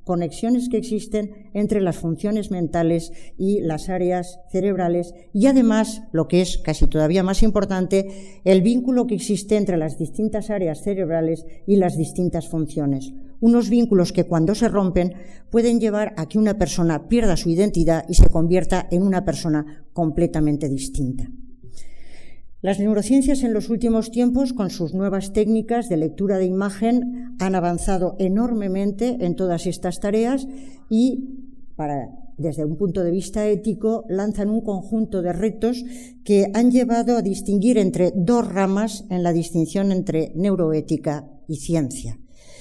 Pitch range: 170-220 Hz